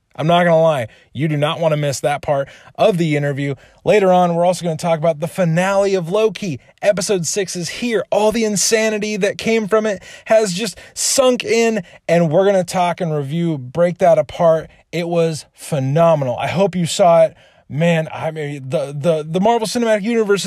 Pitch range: 155-200 Hz